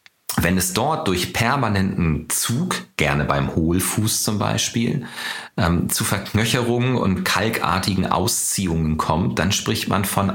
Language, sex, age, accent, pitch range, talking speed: German, male, 40-59, German, 80-115 Hz, 130 wpm